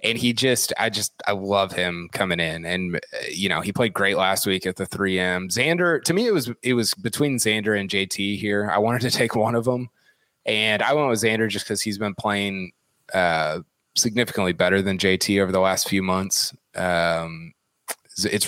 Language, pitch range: English, 95-115 Hz